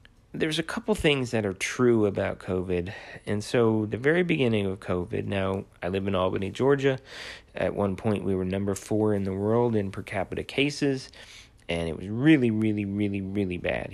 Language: English